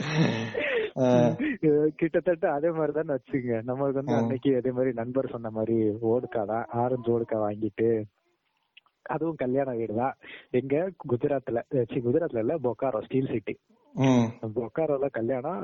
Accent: native